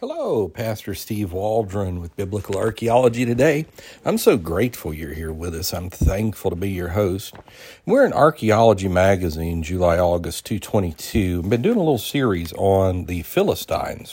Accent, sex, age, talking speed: American, male, 50-69, 155 wpm